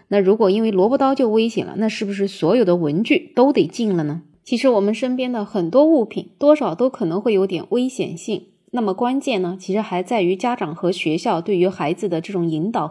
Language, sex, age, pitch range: Chinese, female, 20-39, 180-245 Hz